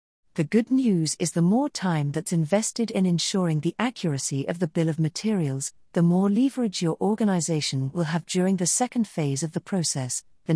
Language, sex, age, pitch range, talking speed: English, female, 50-69, 150-210 Hz, 190 wpm